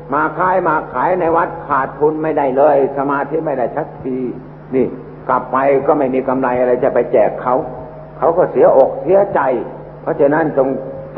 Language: Thai